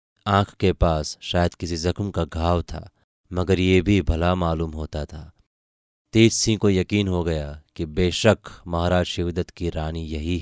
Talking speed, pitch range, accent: 165 wpm, 80-95 Hz, native